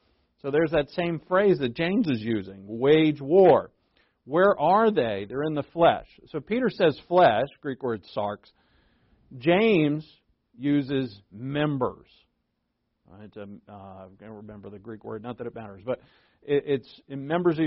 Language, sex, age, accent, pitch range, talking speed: English, male, 50-69, American, 110-155 Hz, 155 wpm